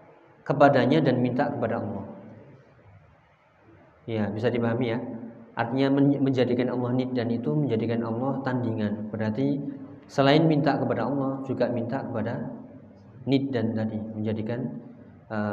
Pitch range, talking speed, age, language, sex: 115-135 Hz, 120 wpm, 20-39, Indonesian, male